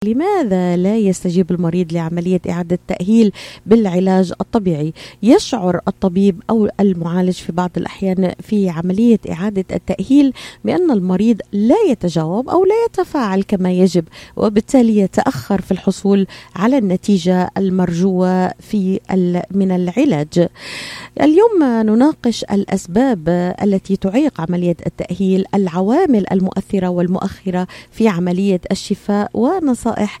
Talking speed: 105 wpm